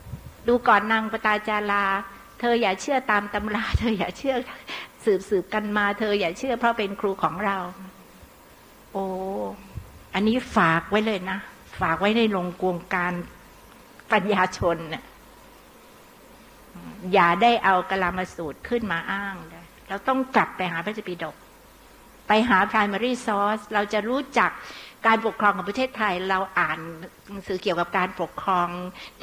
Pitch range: 180-220 Hz